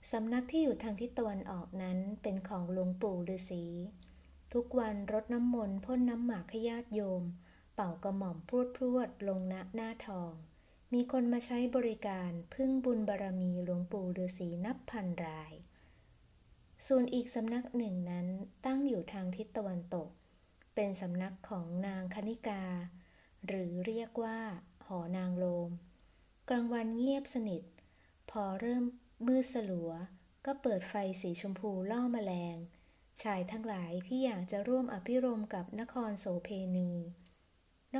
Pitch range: 180-230 Hz